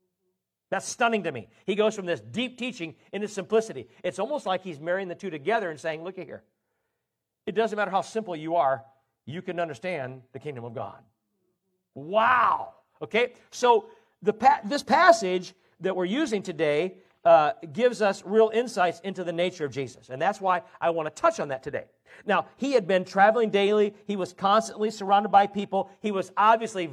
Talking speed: 190 wpm